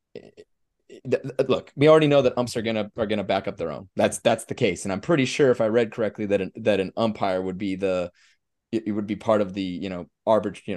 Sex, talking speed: male, 250 wpm